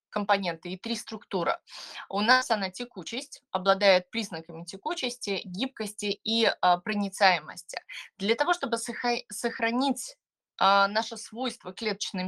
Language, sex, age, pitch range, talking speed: Russian, female, 20-39, 190-240 Hz, 105 wpm